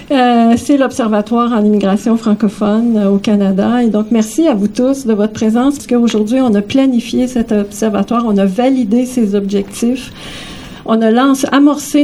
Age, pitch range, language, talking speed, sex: 50-69, 210-245 Hz, French, 165 wpm, female